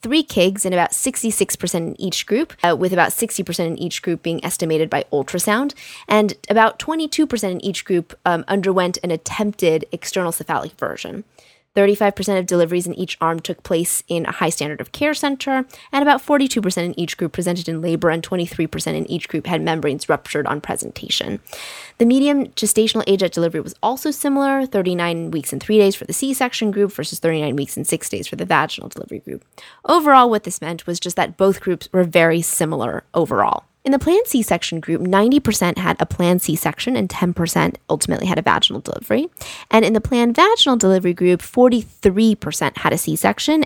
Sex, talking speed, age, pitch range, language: female, 185 wpm, 20-39, 170-225 Hz, English